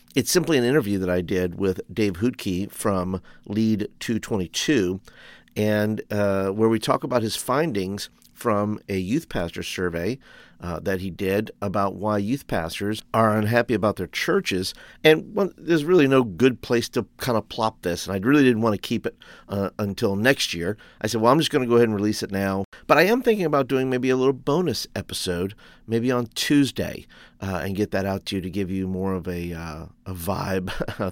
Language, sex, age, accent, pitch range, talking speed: English, male, 50-69, American, 95-120 Hz, 205 wpm